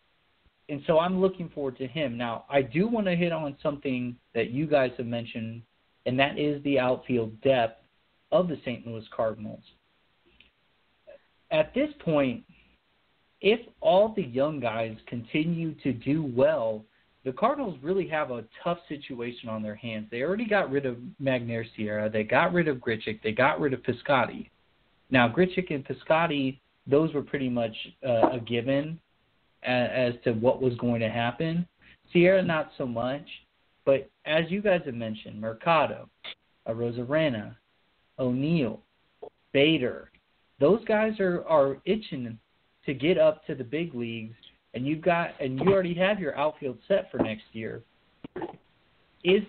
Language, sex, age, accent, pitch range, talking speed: English, male, 40-59, American, 120-175 Hz, 155 wpm